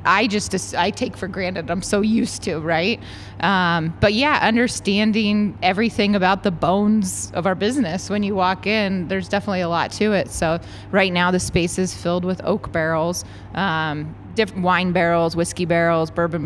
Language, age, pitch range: English, 20-39, 160-195 Hz